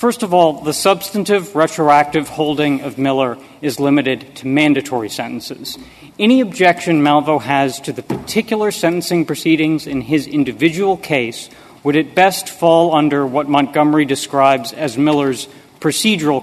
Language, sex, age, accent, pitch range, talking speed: English, male, 40-59, American, 135-170 Hz, 140 wpm